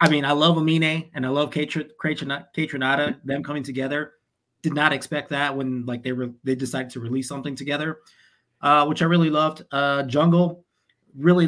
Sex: male